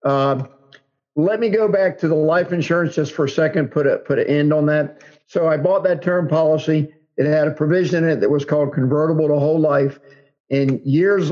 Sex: male